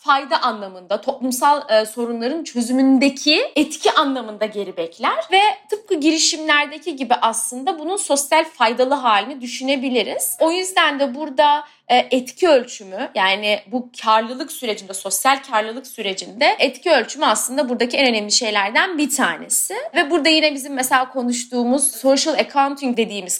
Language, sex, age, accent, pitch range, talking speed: Turkish, female, 30-49, native, 220-285 Hz, 130 wpm